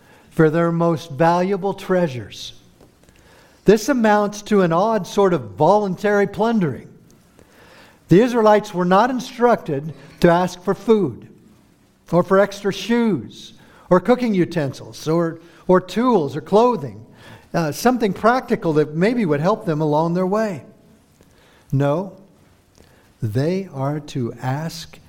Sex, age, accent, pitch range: male, 60-79, American, 140-200 Hz